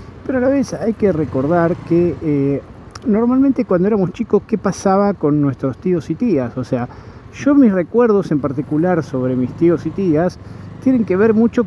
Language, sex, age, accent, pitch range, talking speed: Spanish, male, 50-69, Argentinian, 135-195 Hz, 185 wpm